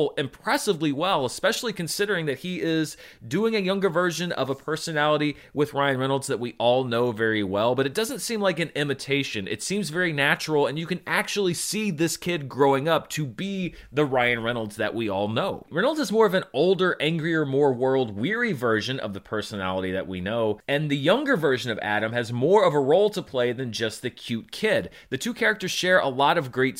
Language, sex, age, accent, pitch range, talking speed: English, male, 30-49, American, 125-180 Hz, 210 wpm